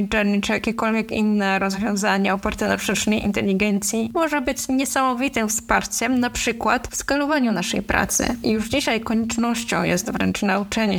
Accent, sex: native, female